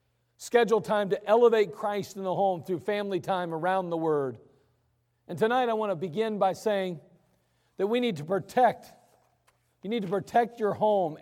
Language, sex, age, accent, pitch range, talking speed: English, male, 50-69, American, 150-195 Hz, 175 wpm